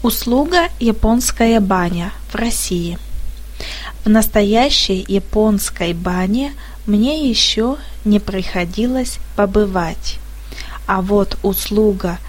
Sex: female